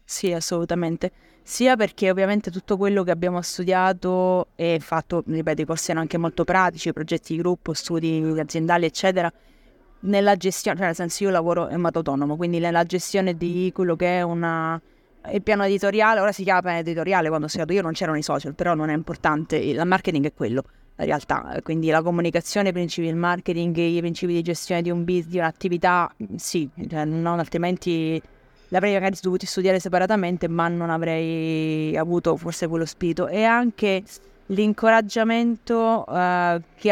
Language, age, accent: Italian, 20-39, native